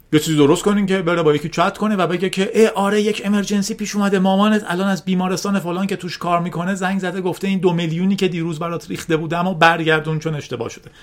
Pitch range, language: 135-200 Hz, Persian